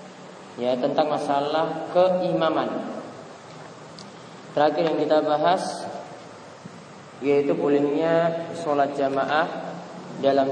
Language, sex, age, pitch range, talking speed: Malay, male, 20-39, 140-160 Hz, 75 wpm